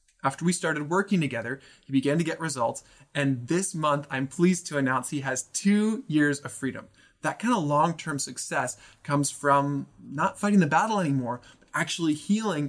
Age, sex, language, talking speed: 20-39, male, English, 180 wpm